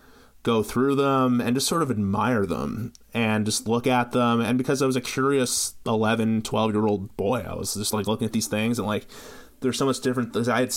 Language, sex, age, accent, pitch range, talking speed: English, male, 30-49, American, 105-130 Hz, 225 wpm